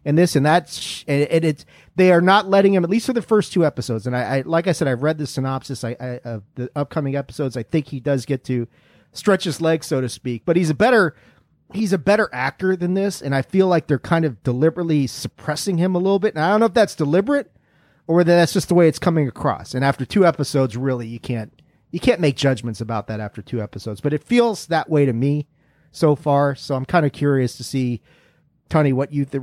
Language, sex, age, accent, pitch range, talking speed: English, male, 40-59, American, 135-175 Hz, 250 wpm